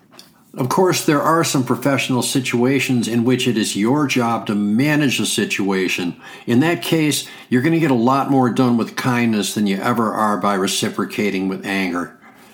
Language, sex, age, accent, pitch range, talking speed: English, male, 60-79, American, 115-135 Hz, 180 wpm